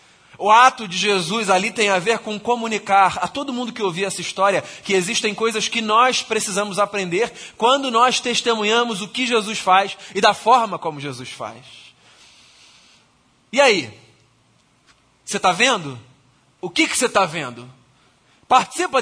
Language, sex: Portuguese, male